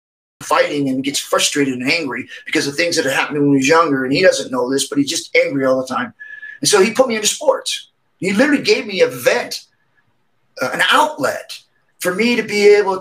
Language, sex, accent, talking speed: English, male, American, 225 wpm